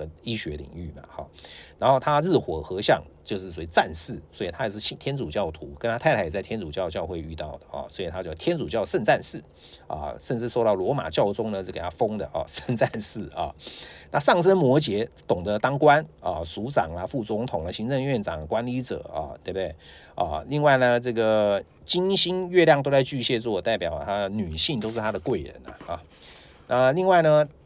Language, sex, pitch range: English, male, 105-150 Hz